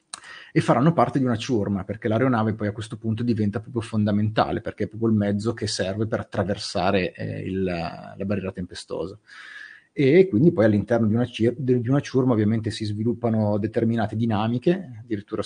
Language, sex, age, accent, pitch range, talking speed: Italian, male, 30-49, native, 105-125 Hz, 165 wpm